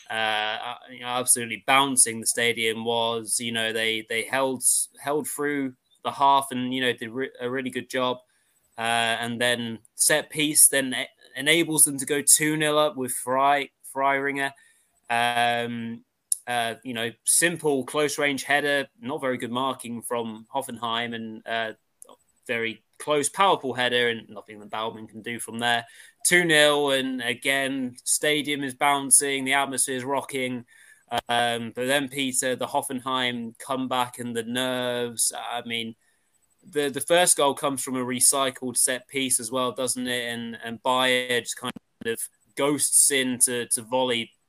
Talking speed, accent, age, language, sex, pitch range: 155 wpm, British, 20-39, English, male, 120-140 Hz